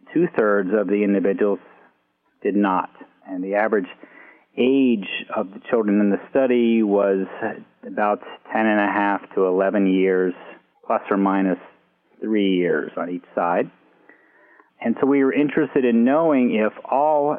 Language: English